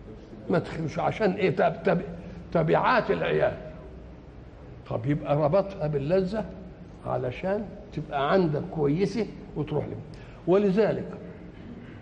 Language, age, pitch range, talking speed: Arabic, 60-79, 155-205 Hz, 85 wpm